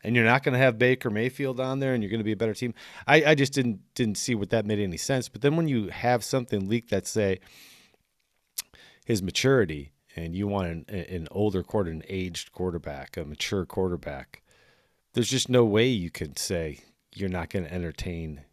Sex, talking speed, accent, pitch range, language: male, 210 wpm, American, 90-125 Hz, English